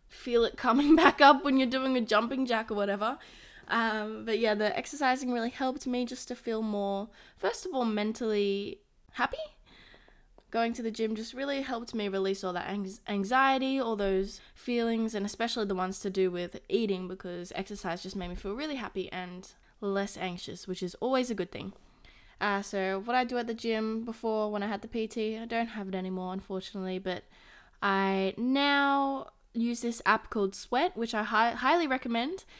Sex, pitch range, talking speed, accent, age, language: female, 195-240 Hz, 190 wpm, Australian, 20-39, English